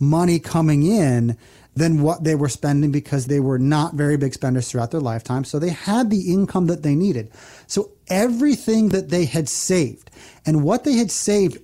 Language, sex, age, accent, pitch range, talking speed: English, male, 30-49, American, 135-180 Hz, 190 wpm